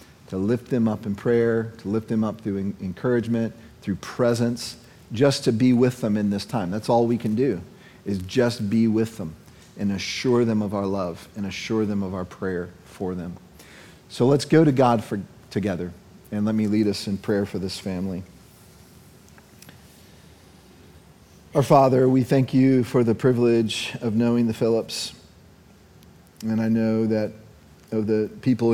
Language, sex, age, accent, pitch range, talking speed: English, male, 40-59, American, 100-115 Hz, 170 wpm